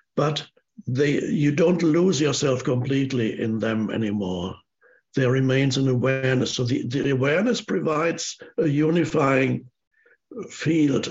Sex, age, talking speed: male, 60-79, 115 wpm